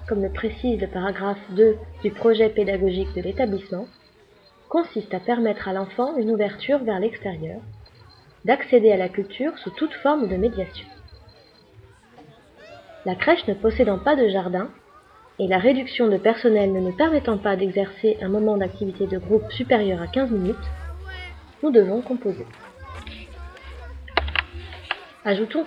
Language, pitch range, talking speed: French, 185-245 Hz, 140 wpm